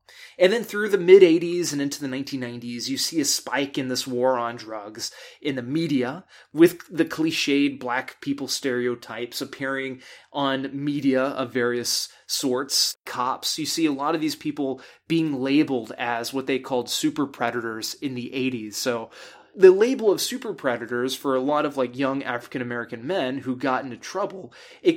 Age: 20-39